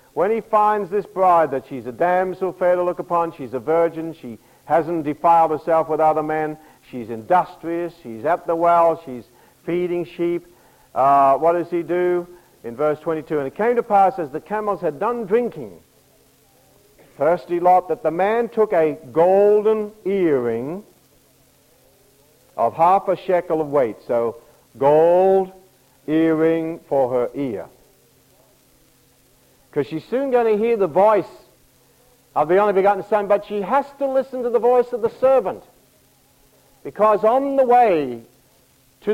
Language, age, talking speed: English, 60-79, 155 wpm